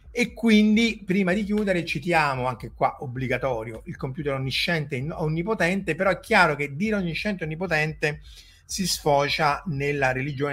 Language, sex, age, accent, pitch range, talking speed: Italian, male, 30-49, native, 130-165 Hz, 150 wpm